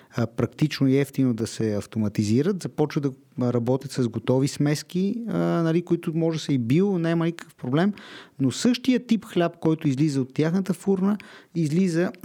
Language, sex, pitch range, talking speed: Bulgarian, male, 130-170 Hz, 155 wpm